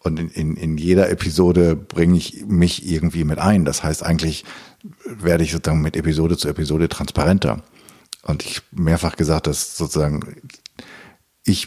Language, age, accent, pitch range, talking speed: German, 50-69, German, 80-95 Hz, 155 wpm